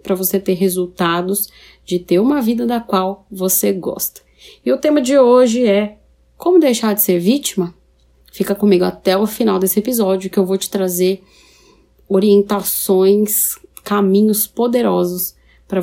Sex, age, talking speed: female, 30-49, 150 wpm